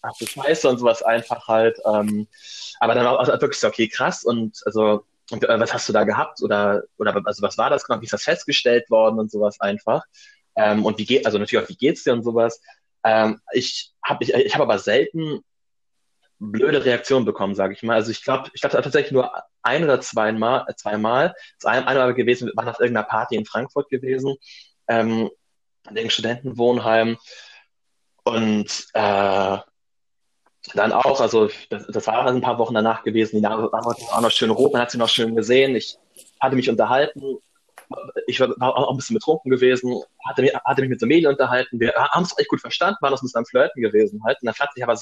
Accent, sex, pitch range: German, male, 110-130 Hz